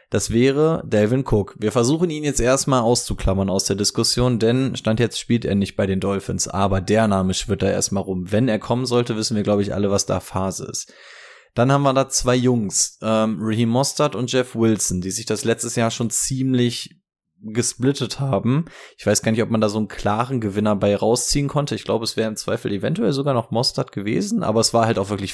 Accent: German